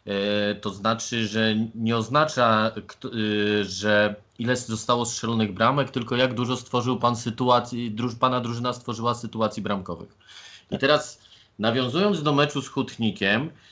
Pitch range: 105-125 Hz